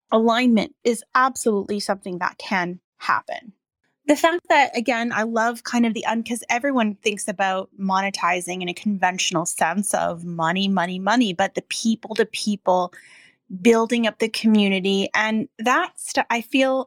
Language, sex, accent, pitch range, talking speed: English, female, American, 190-235 Hz, 155 wpm